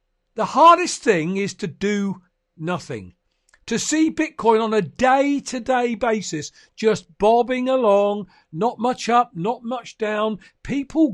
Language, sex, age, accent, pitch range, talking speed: English, male, 50-69, British, 185-270 Hz, 140 wpm